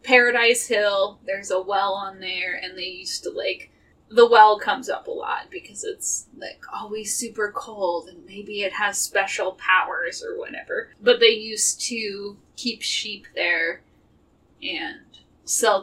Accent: American